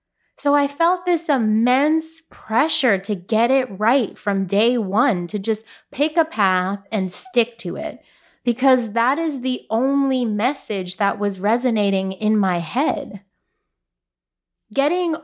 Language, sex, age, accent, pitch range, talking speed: English, female, 20-39, American, 195-255 Hz, 140 wpm